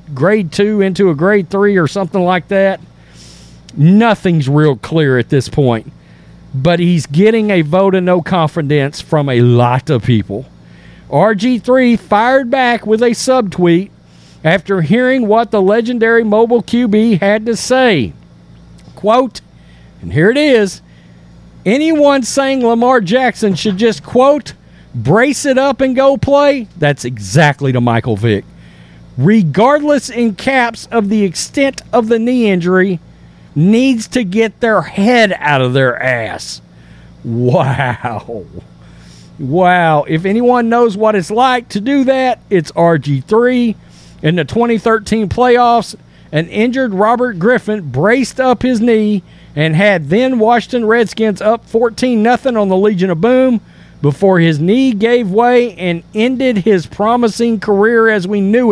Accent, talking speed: American, 140 wpm